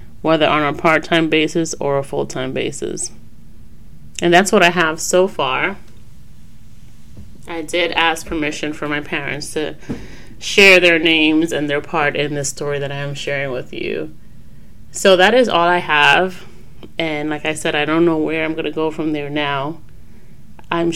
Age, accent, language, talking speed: 30-49, American, English, 175 wpm